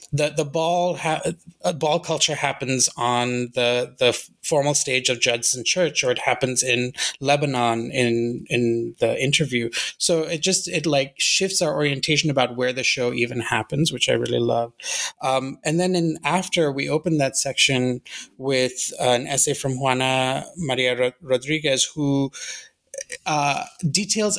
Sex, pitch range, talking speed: male, 130-160 Hz, 155 wpm